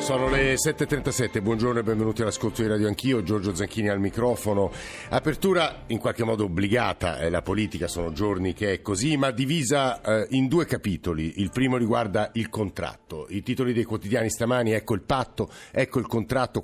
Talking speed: 175 wpm